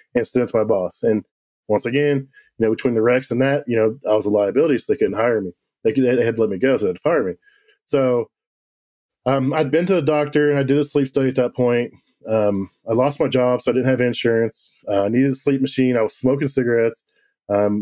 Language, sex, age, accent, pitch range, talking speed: English, male, 20-39, American, 110-145 Hz, 260 wpm